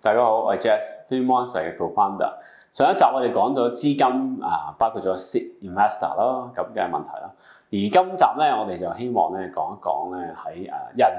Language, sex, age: Chinese, male, 20-39